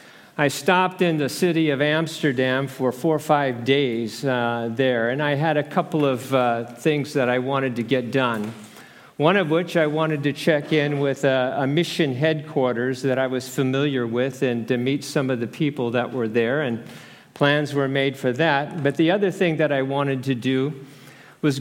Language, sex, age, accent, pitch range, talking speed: English, male, 50-69, American, 130-160 Hz, 200 wpm